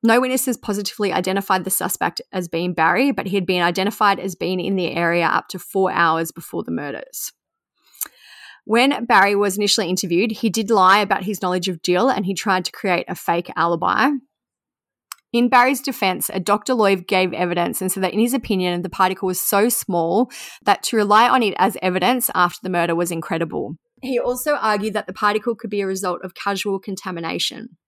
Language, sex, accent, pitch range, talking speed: English, female, Australian, 180-220 Hz, 195 wpm